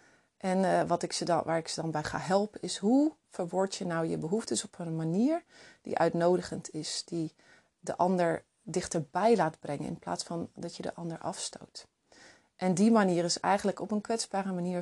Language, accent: Dutch, Dutch